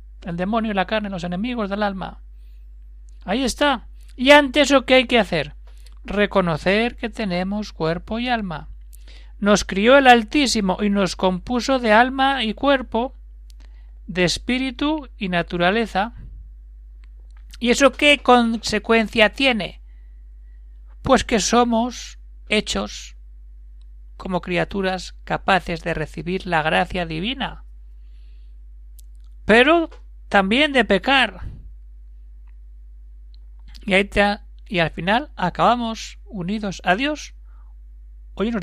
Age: 60-79